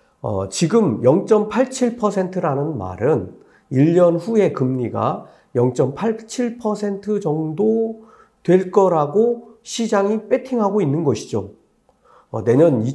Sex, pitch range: male, 125-200 Hz